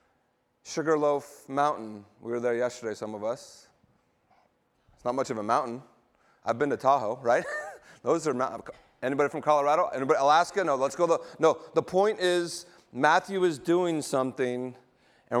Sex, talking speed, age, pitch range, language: male, 160 wpm, 30-49, 120-155 Hz, English